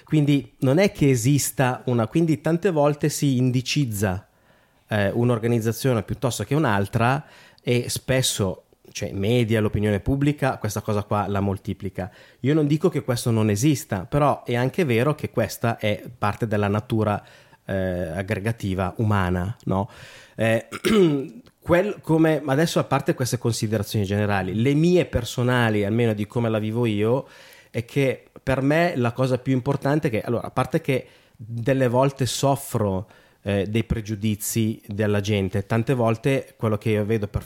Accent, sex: native, male